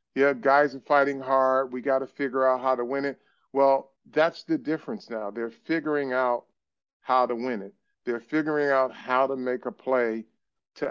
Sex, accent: male, American